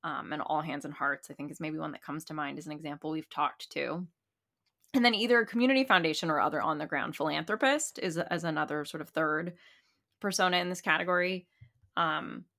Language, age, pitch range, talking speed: English, 20-39, 150-180 Hz, 200 wpm